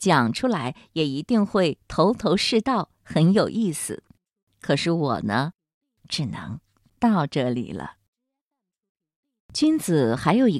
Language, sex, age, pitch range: Chinese, female, 50-69, 140-225 Hz